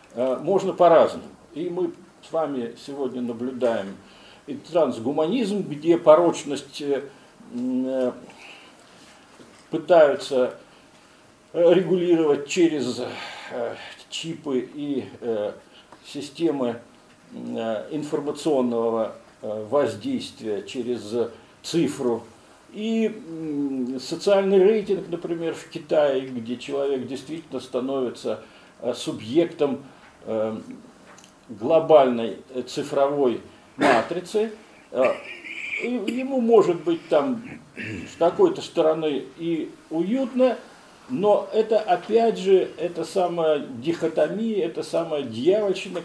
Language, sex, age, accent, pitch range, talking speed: Russian, male, 50-69, native, 140-200 Hz, 70 wpm